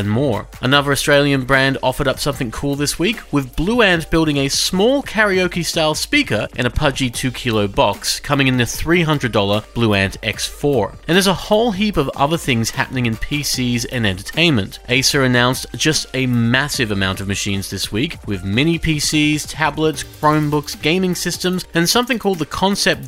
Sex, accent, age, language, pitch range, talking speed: male, Australian, 30-49, English, 115-165 Hz, 175 wpm